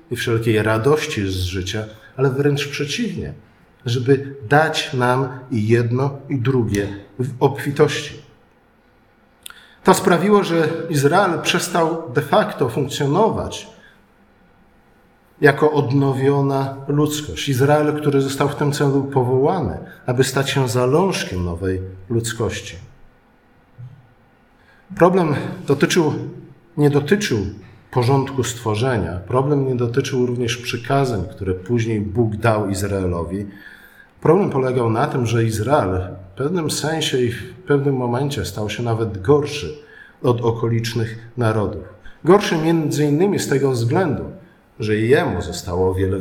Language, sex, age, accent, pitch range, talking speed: Polish, male, 50-69, native, 115-145 Hz, 115 wpm